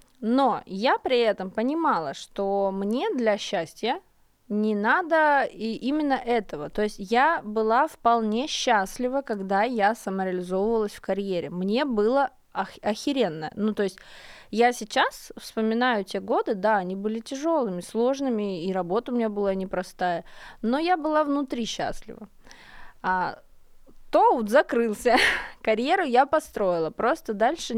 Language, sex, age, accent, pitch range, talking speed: Russian, female, 20-39, native, 200-260 Hz, 130 wpm